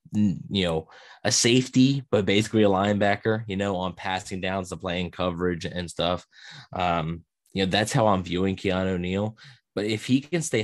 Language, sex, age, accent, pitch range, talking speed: English, male, 20-39, American, 90-105 Hz, 180 wpm